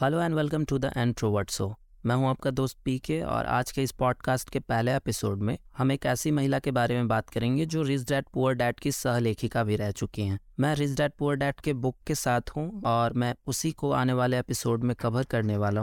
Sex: male